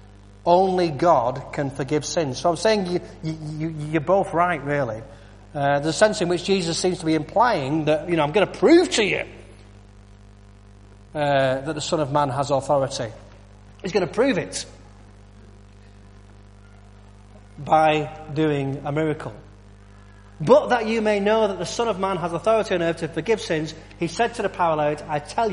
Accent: British